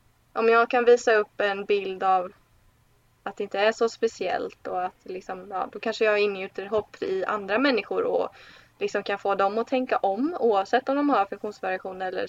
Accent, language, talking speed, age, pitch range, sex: native, Swedish, 195 wpm, 20-39, 195-235 Hz, female